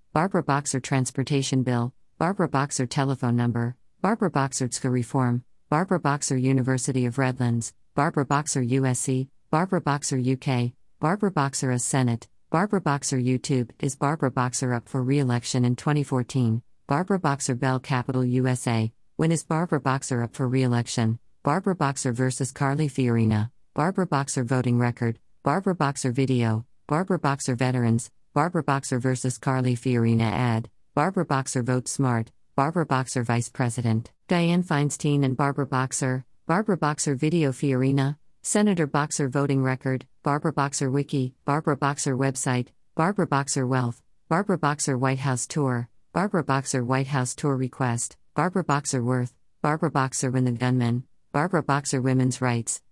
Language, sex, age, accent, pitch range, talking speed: English, female, 50-69, American, 125-145 Hz, 140 wpm